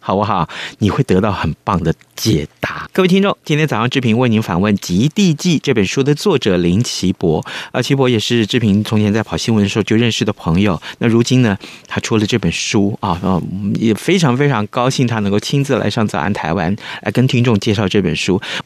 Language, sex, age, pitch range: Chinese, male, 30-49, 100-130 Hz